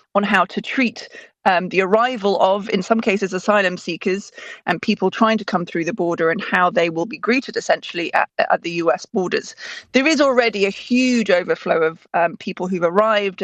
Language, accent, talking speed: English, British, 195 wpm